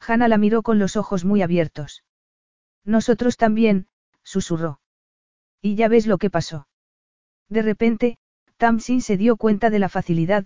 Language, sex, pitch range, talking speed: Spanish, female, 175-225 Hz, 150 wpm